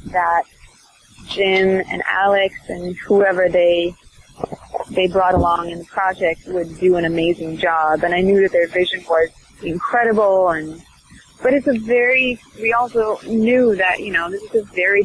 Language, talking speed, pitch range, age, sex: English, 165 wpm, 175-220 Hz, 20-39, female